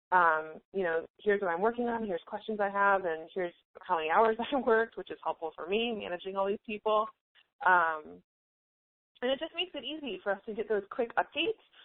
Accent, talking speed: American, 215 wpm